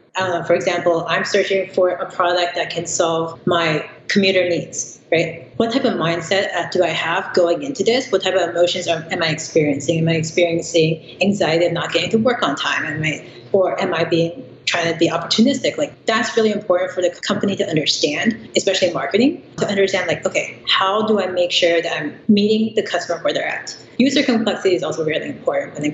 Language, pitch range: English, 165-210 Hz